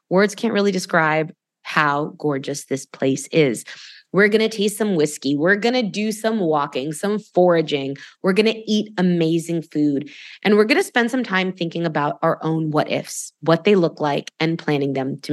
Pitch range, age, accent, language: 155-210 Hz, 20-39, American, English